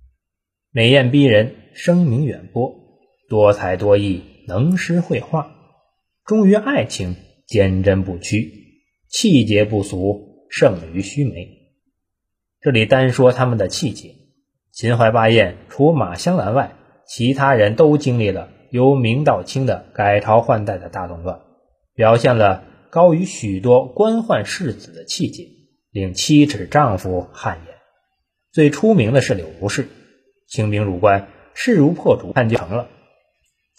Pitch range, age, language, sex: 100-145 Hz, 20-39, Chinese, male